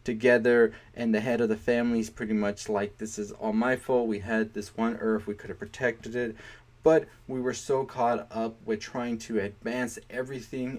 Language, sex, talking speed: English, male, 205 wpm